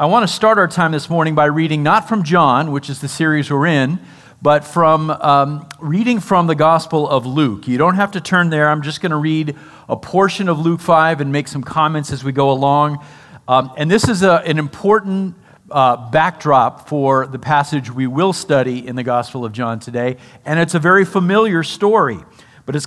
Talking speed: 210 wpm